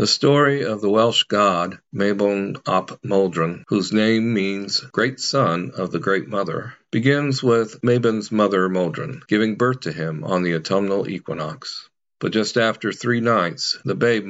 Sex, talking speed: male, 160 wpm